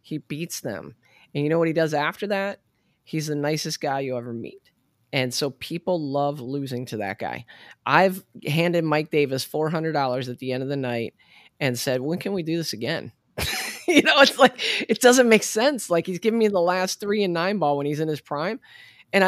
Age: 20-39